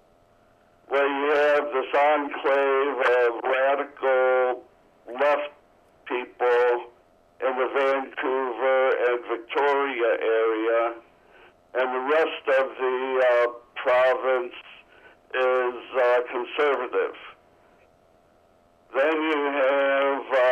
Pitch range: 125-140 Hz